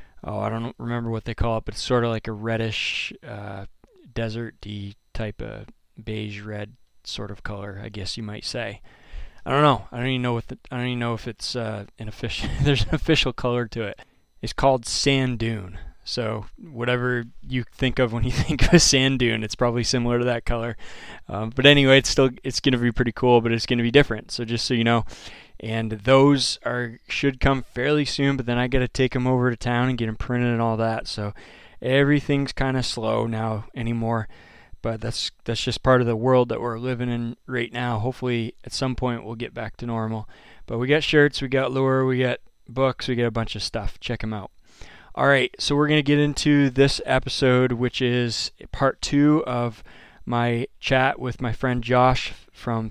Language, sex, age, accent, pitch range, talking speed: English, male, 20-39, American, 110-130 Hz, 215 wpm